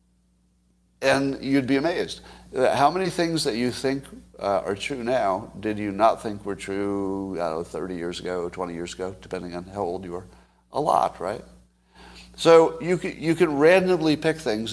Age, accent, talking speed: 60-79, American, 170 wpm